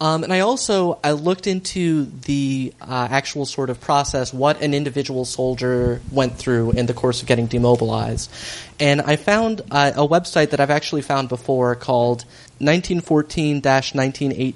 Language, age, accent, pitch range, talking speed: English, 30-49, American, 120-145 Hz, 155 wpm